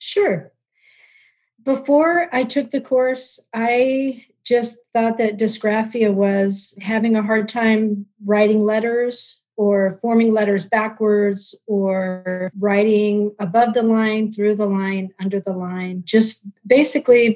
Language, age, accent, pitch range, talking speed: English, 40-59, American, 200-230 Hz, 120 wpm